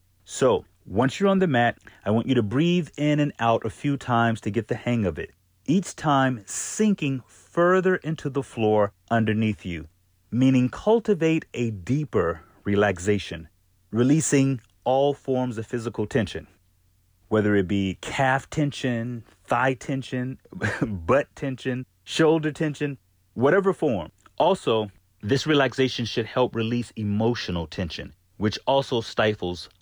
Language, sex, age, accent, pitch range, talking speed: English, male, 30-49, American, 95-135 Hz, 135 wpm